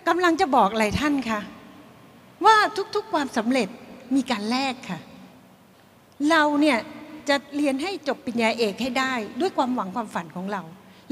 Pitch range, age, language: 220-300 Hz, 60-79, Thai